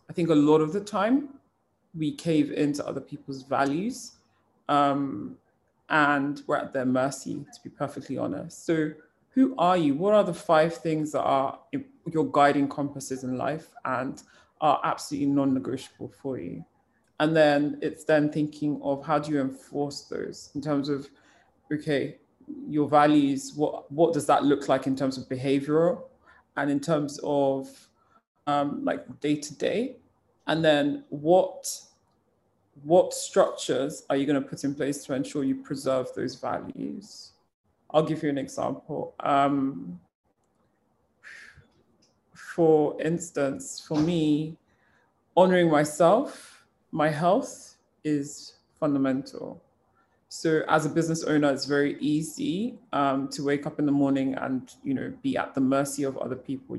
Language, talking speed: English, 150 wpm